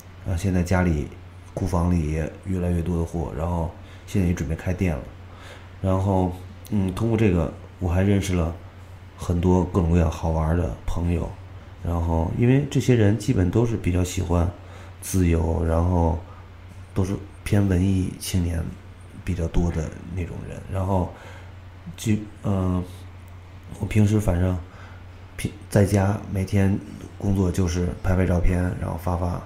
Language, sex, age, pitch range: Chinese, male, 30-49, 90-95 Hz